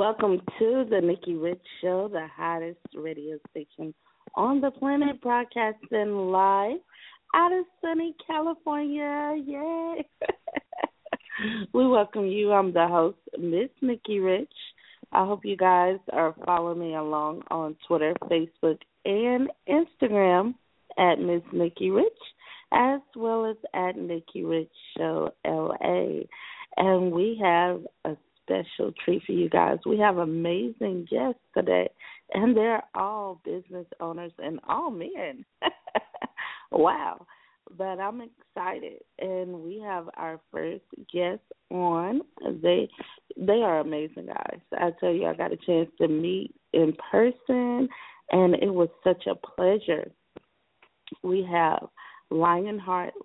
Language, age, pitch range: English, 30-49, 170-255 Hz